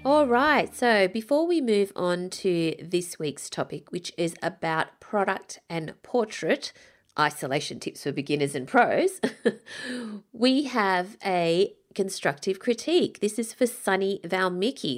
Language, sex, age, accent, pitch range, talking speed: English, female, 30-49, Australian, 160-215 Hz, 130 wpm